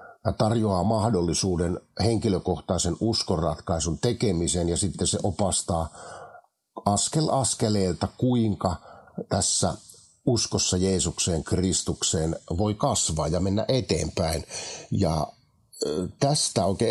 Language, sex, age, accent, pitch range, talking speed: Finnish, male, 50-69, native, 85-110 Hz, 85 wpm